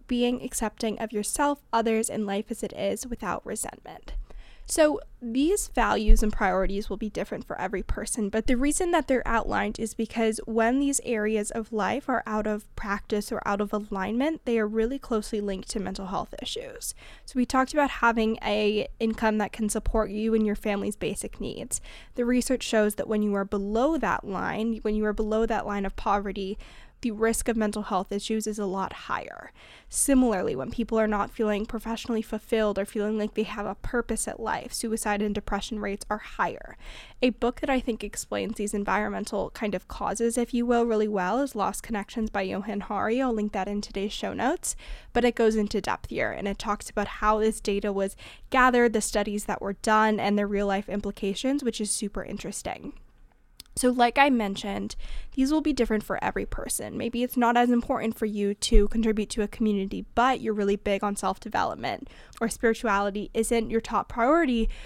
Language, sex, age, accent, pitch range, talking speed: English, female, 10-29, American, 205-235 Hz, 195 wpm